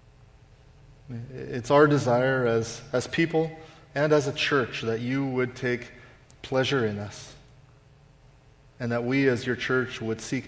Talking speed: 145 wpm